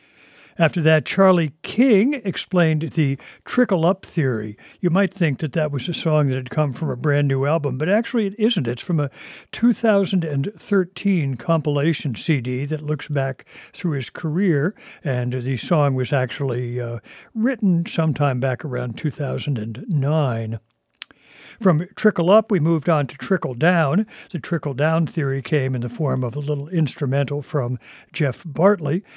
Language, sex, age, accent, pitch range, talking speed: English, male, 60-79, American, 135-175 Hz, 150 wpm